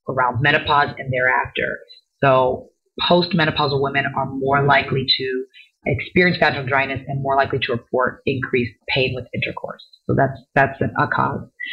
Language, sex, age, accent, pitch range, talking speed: English, female, 30-49, American, 135-180 Hz, 150 wpm